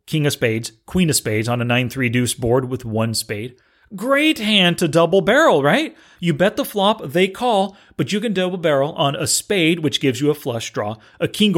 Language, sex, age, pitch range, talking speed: English, male, 30-49, 125-185 Hz, 210 wpm